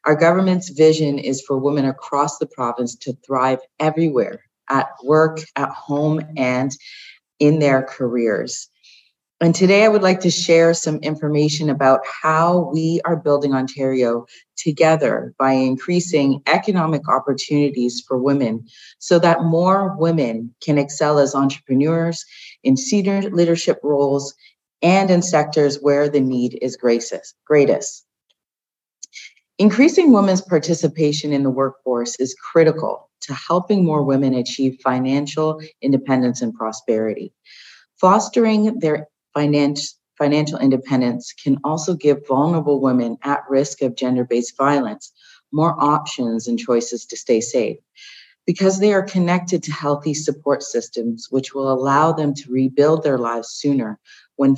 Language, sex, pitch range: English, female, 130-165 Hz